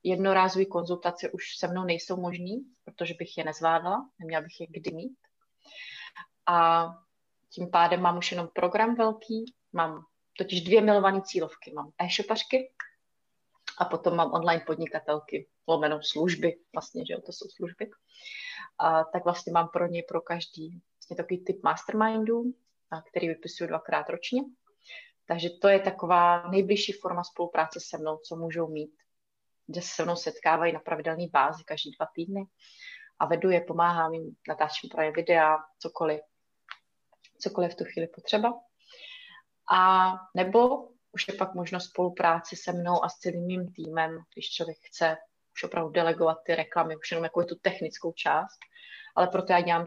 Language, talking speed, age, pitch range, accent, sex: Czech, 155 wpm, 30-49, 165-195 Hz, native, female